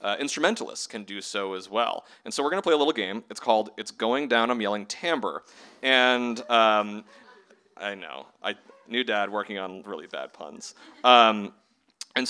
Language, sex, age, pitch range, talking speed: English, male, 30-49, 110-180 Hz, 180 wpm